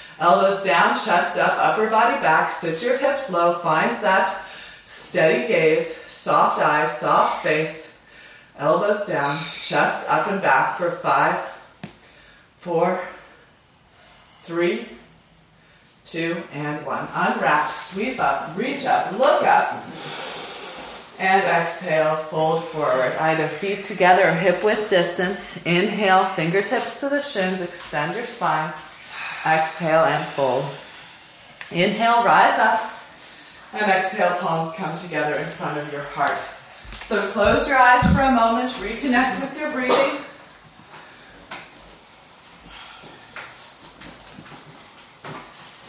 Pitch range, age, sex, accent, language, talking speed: 160-215 Hz, 30-49, female, American, English, 110 wpm